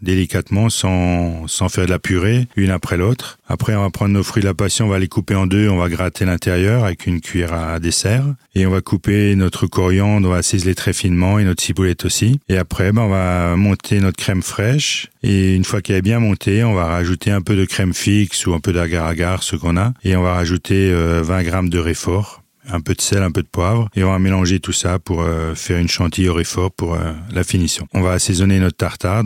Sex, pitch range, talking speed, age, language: male, 90-100 Hz, 240 wpm, 40-59, French